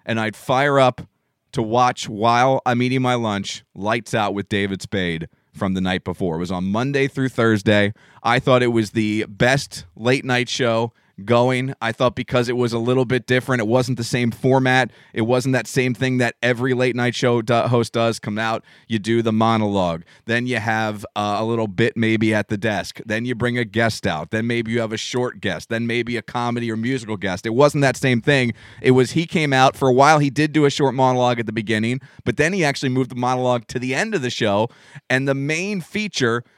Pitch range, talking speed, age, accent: 115-135 Hz, 225 wpm, 30-49, American